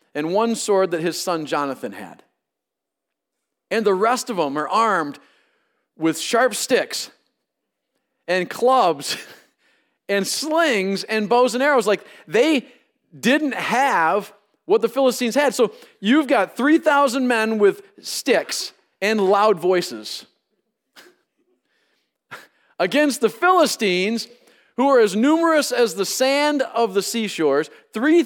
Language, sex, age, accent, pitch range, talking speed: English, male, 40-59, American, 200-280 Hz, 125 wpm